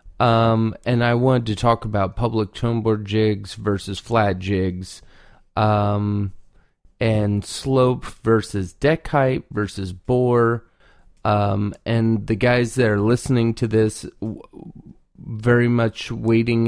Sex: male